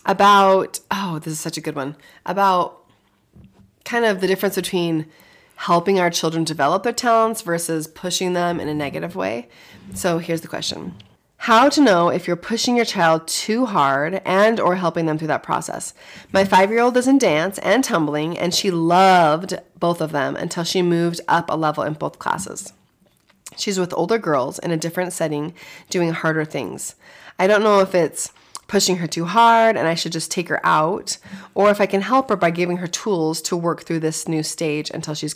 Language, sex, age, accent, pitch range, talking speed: English, female, 30-49, American, 160-195 Hz, 195 wpm